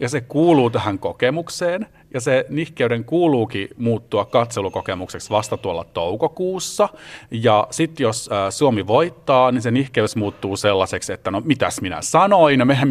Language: Finnish